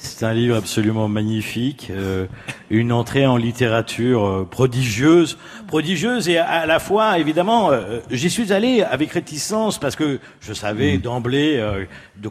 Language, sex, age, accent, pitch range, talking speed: French, male, 50-69, French, 120-175 Hz, 140 wpm